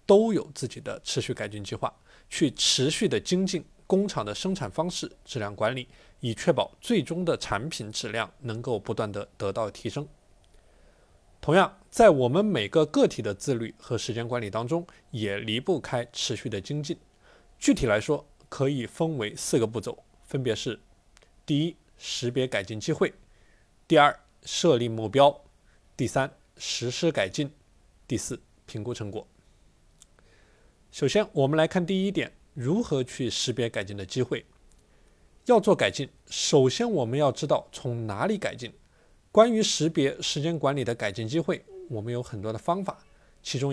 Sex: male